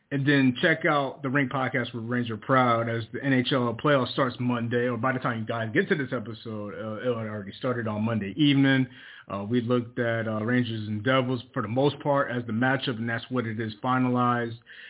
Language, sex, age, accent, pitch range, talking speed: English, male, 30-49, American, 120-145 Hz, 220 wpm